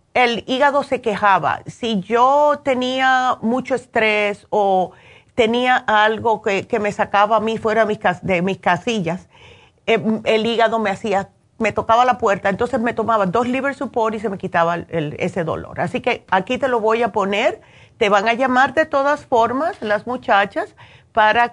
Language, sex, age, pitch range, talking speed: Spanish, female, 40-59, 200-245 Hz, 185 wpm